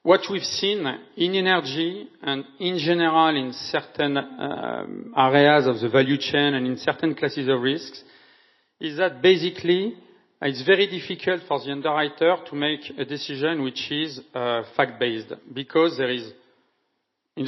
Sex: male